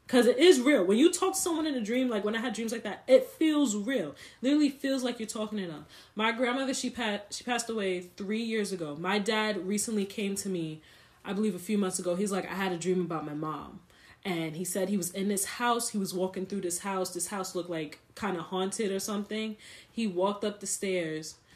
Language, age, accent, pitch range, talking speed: English, 10-29, American, 180-245 Hz, 240 wpm